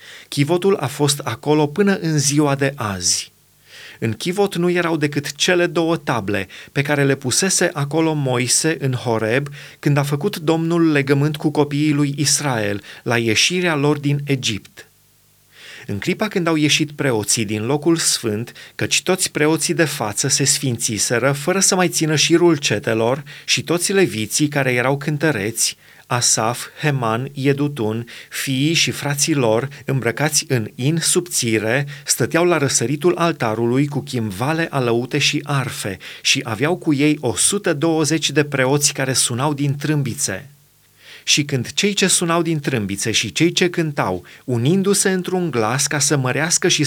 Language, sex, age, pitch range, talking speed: Romanian, male, 30-49, 125-160 Hz, 150 wpm